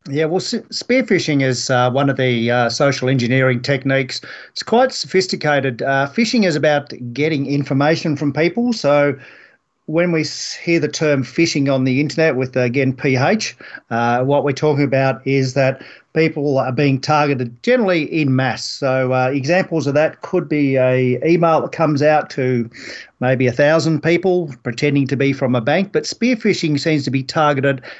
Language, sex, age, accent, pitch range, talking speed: English, male, 40-59, Australian, 135-165 Hz, 175 wpm